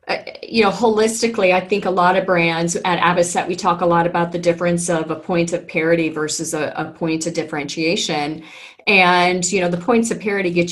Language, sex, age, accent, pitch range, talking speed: English, female, 30-49, American, 170-205 Hz, 215 wpm